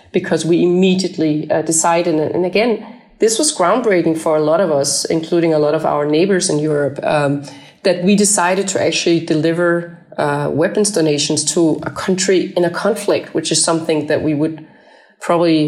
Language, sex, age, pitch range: English, female, 30-49, 155-180 Hz